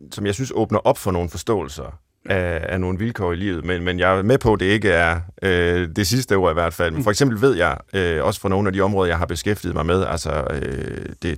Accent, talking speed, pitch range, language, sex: native, 250 wpm, 90-120 Hz, Danish, male